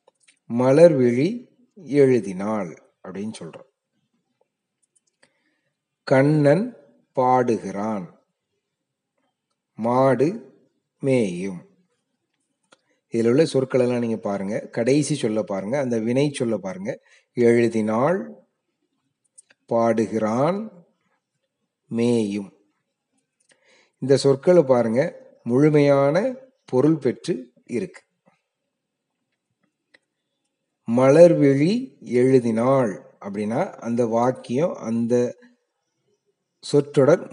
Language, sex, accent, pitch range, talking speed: Tamil, male, native, 115-150 Hz, 60 wpm